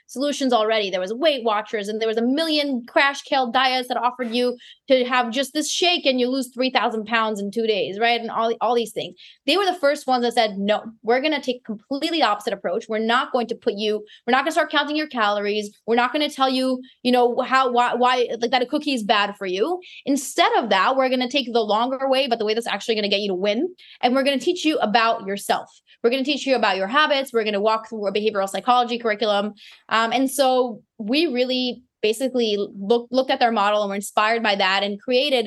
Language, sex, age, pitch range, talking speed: English, female, 20-39, 215-265 Hz, 255 wpm